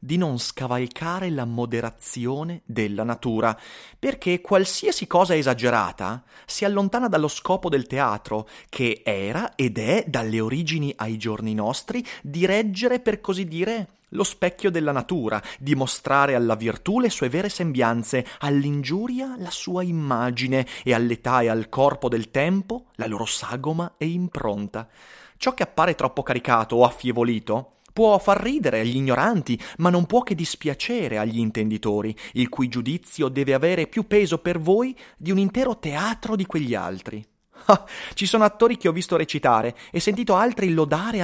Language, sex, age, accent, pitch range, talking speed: Italian, male, 30-49, native, 120-195 Hz, 155 wpm